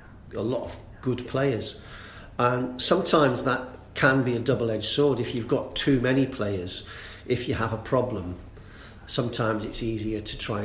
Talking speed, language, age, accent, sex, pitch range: 165 wpm, English, 40-59, British, male, 105-125 Hz